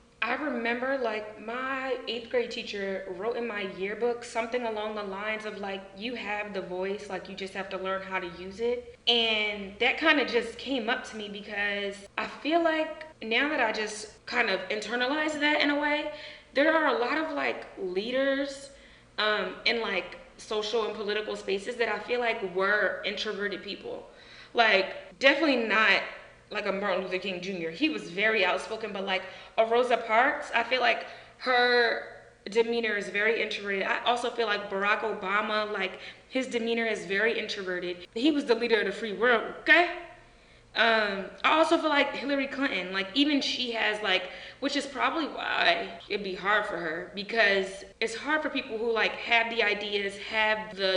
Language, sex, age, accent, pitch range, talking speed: English, female, 20-39, American, 200-250 Hz, 185 wpm